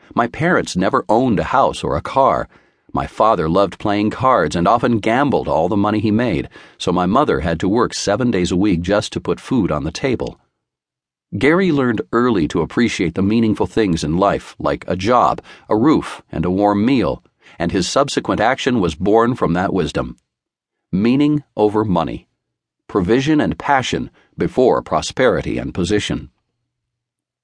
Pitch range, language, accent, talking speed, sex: 90-120 Hz, English, American, 170 wpm, male